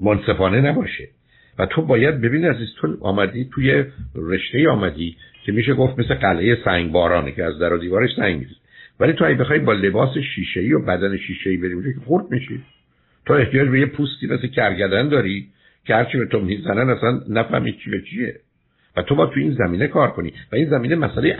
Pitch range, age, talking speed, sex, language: 85-120 Hz, 60-79, 190 wpm, male, Persian